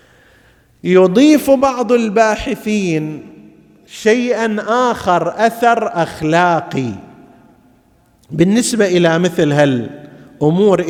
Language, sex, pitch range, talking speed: Arabic, male, 155-190 Hz, 60 wpm